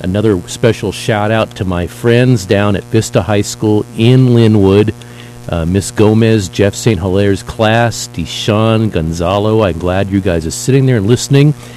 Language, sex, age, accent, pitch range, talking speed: English, male, 50-69, American, 95-120 Hz, 160 wpm